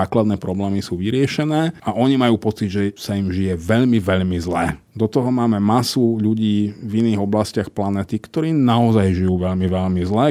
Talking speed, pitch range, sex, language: 175 wpm, 95-115 Hz, male, Slovak